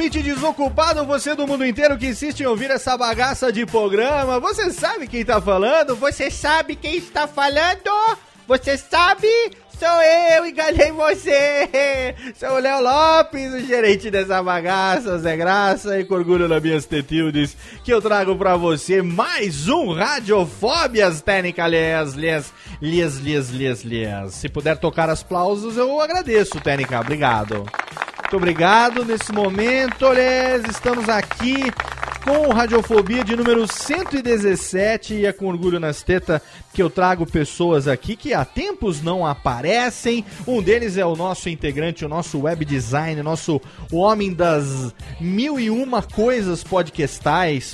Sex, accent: male, Brazilian